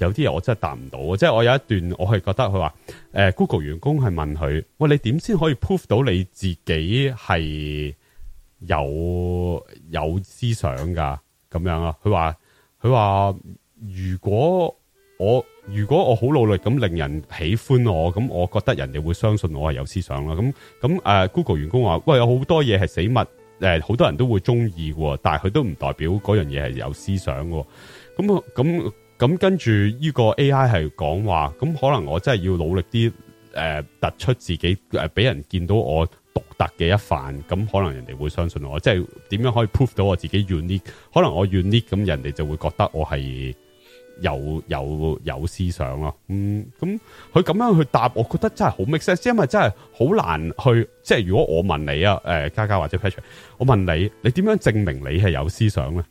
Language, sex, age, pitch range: English, male, 30-49, 80-120 Hz